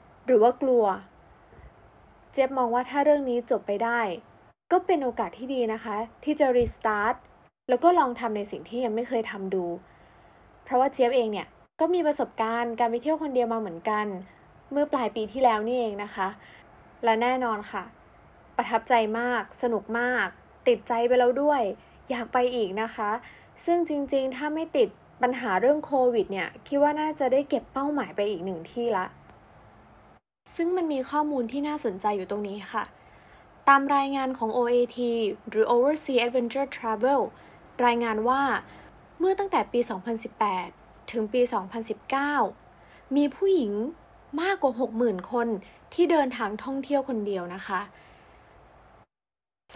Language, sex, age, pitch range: Thai, female, 20-39, 220-275 Hz